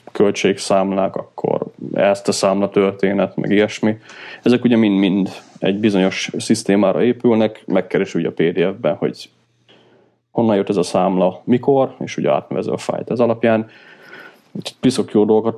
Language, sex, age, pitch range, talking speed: Hungarian, male, 30-49, 95-110 Hz, 135 wpm